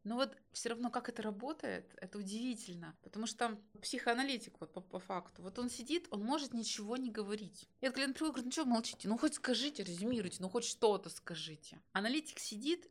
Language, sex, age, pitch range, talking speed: Russian, female, 20-39, 195-260 Hz, 195 wpm